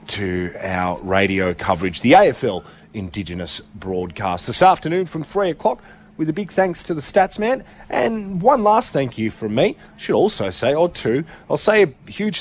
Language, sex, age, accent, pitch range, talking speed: English, male, 30-49, Australian, 100-130 Hz, 185 wpm